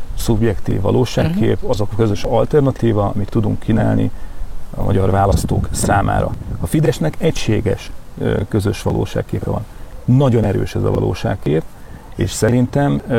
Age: 40-59